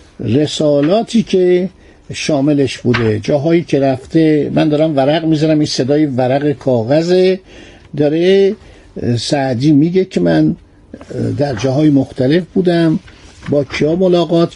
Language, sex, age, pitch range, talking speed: Persian, male, 50-69, 130-175 Hz, 110 wpm